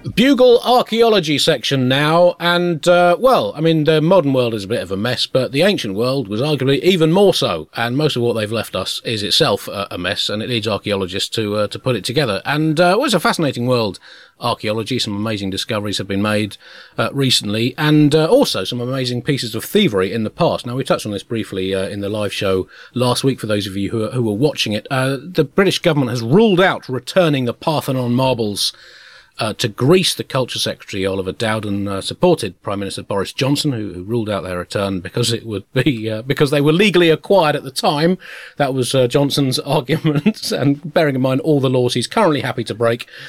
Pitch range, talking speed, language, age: 105-150 Hz, 220 wpm, English, 30-49